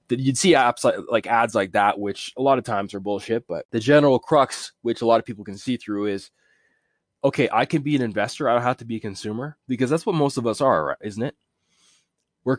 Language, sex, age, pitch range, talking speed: English, male, 20-39, 100-130 Hz, 245 wpm